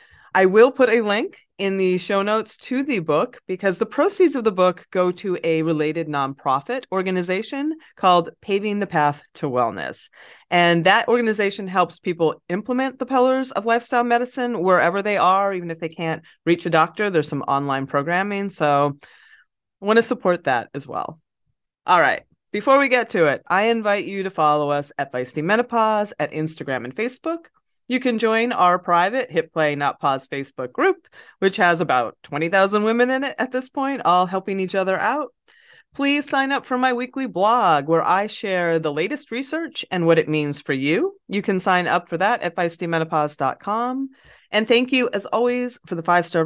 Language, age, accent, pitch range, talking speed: English, 30-49, American, 165-235 Hz, 185 wpm